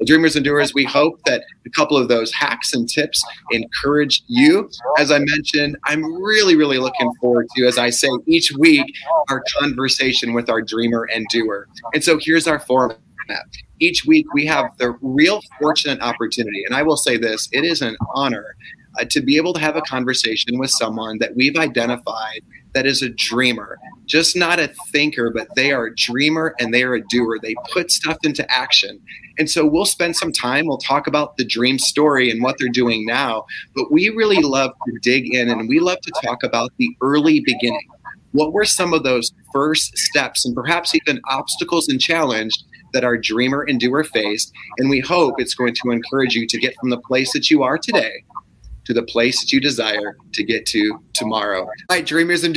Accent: American